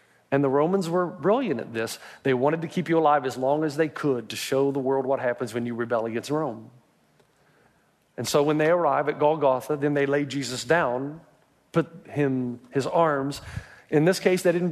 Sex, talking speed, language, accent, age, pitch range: male, 205 wpm, English, American, 40-59, 130-160 Hz